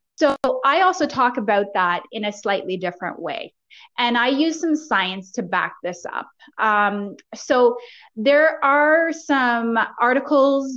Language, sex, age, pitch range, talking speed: English, female, 20-39, 205-270 Hz, 145 wpm